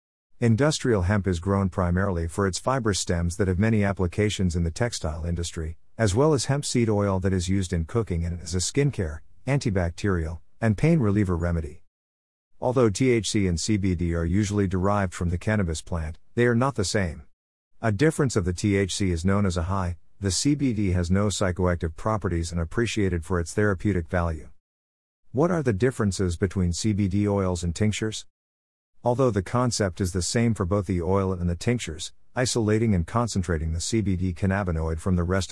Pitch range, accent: 85-110 Hz, American